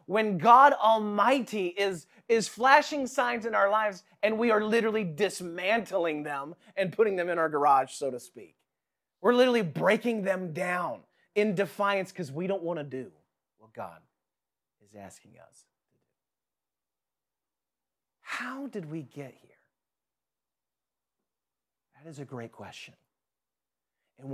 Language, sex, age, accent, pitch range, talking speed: English, male, 30-49, American, 145-205 Hz, 140 wpm